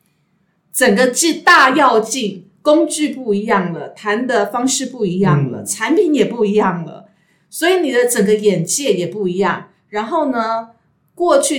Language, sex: Chinese, female